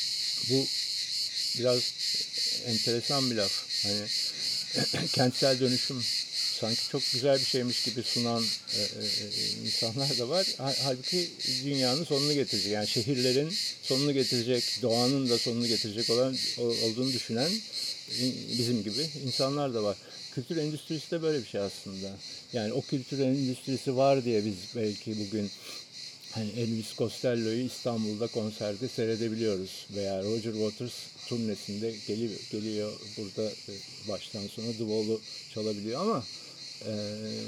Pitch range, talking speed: 110-140 Hz, 115 wpm